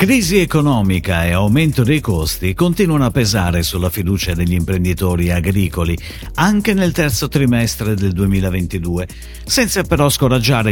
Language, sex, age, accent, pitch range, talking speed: Italian, male, 50-69, native, 90-150 Hz, 130 wpm